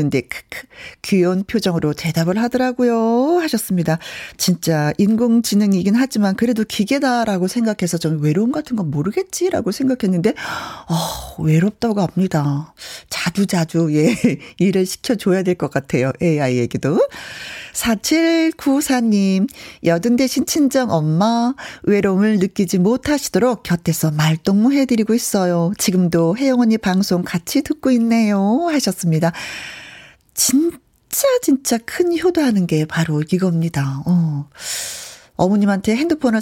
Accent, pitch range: native, 165-235 Hz